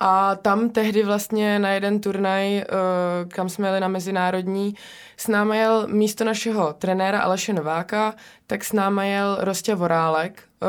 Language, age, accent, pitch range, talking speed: Czech, 20-39, native, 185-210 Hz, 145 wpm